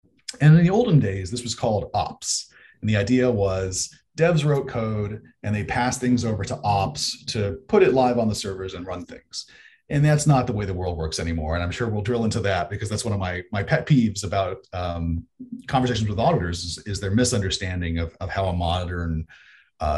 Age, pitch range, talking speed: 30-49, 90-125 Hz, 215 wpm